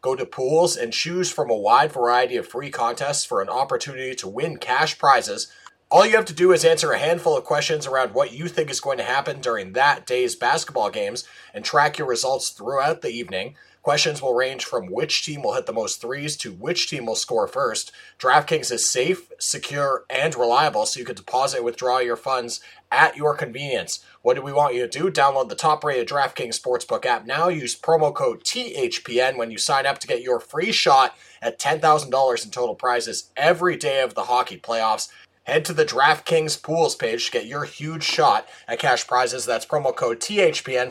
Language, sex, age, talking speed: English, male, 30-49, 210 wpm